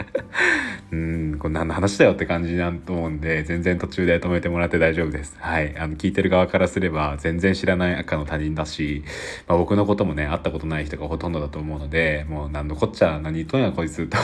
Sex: male